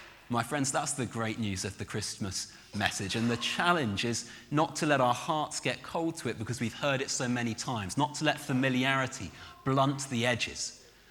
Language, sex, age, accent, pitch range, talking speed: English, male, 30-49, British, 115-145 Hz, 200 wpm